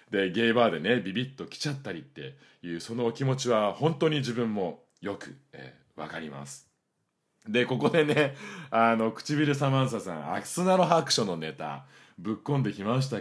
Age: 40-59